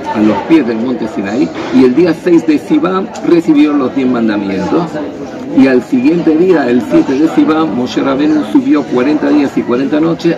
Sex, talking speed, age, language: male, 185 wpm, 50-69, Greek